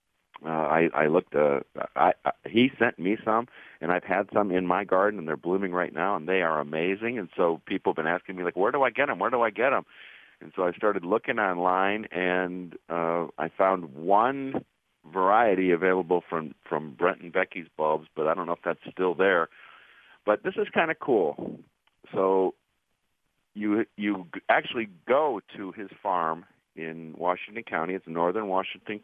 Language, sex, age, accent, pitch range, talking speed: English, male, 50-69, American, 85-105 Hz, 190 wpm